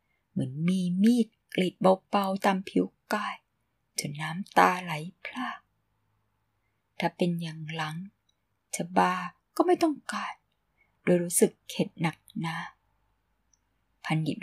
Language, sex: Thai, female